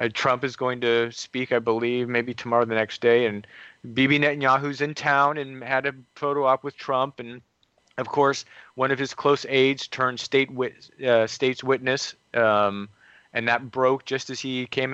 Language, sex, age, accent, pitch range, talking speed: English, male, 30-49, American, 115-135 Hz, 175 wpm